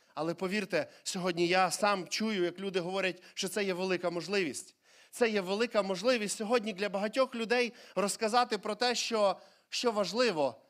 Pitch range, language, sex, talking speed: 175-220 Hz, Ukrainian, male, 155 wpm